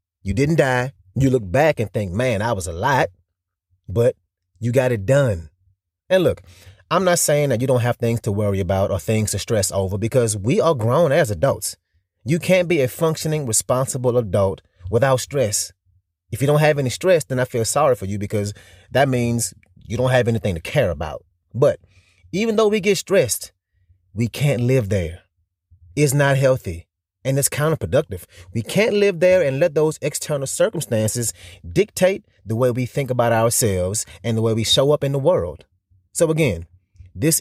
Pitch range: 95-145 Hz